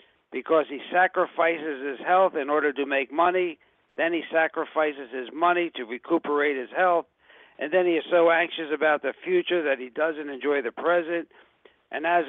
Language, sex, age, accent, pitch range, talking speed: English, male, 60-79, American, 140-170 Hz, 175 wpm